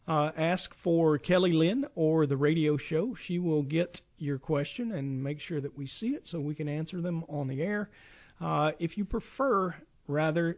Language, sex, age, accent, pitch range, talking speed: English, male, 40-59, American, 145-180 Hz, 195 wpm